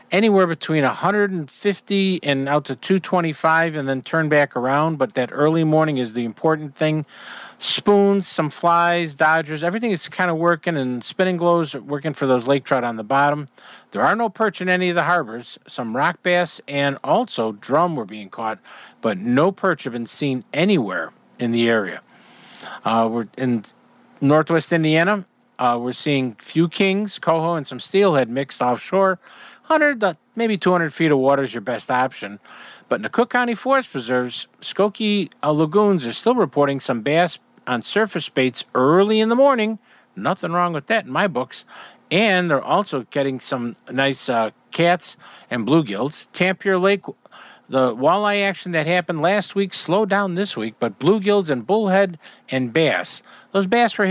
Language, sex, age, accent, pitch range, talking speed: English, male, 50-69, American, 135-195 Hz, 175 wpm